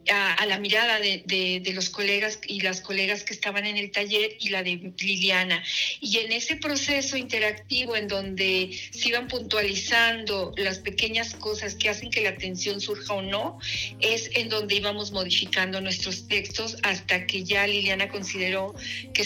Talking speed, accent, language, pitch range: 170 wpm, Mexican, Spanish, 190-215 Hz